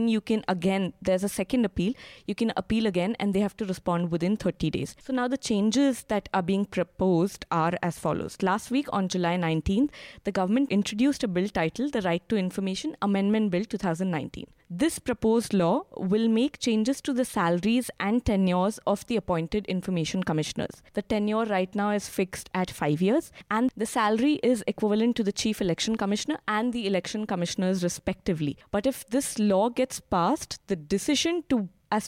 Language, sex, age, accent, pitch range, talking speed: English, female, 20-39, Indian, 180-225 Hz, 185 wpm